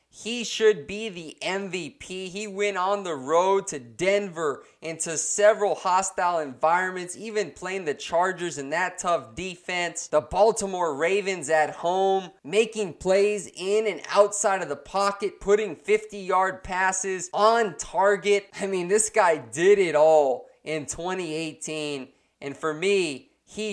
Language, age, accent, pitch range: English, 20-39, American, 175-215 Hz